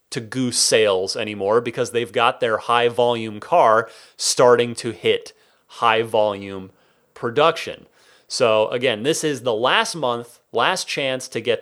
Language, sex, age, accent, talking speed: English, male, 30-49, American, 135 wpm